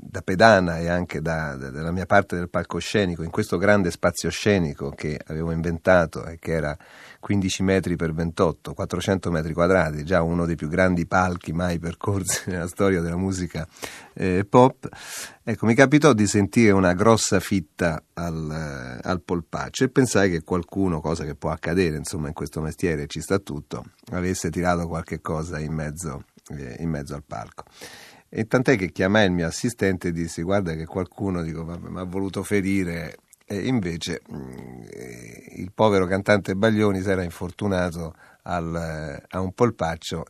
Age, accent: 40-59, native